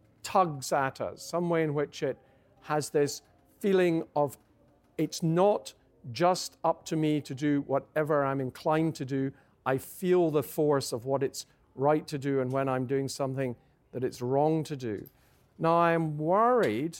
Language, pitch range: English, 135-160 Hz